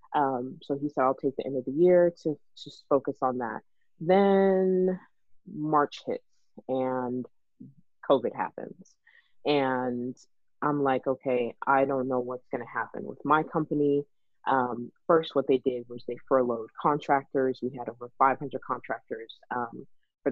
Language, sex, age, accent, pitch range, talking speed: English, female, 30-49, American, 130-150 Hz, 155 wpm